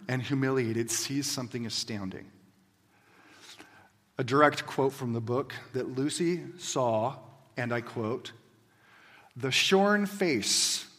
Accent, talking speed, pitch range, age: American, 110 wpm, 110-145 Hz, 40-59